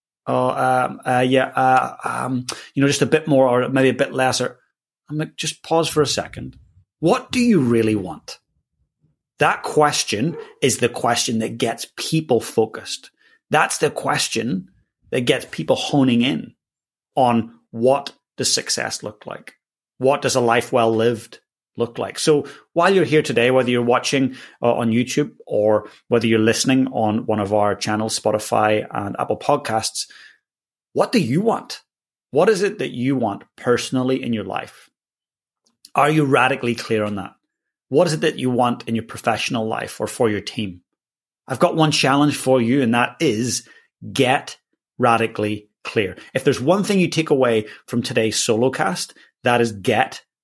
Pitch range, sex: 110-145 Hz, male